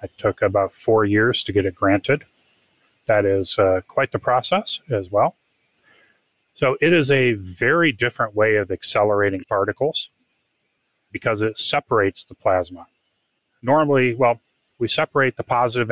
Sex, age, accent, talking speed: male, 30-49, American, 145 wpm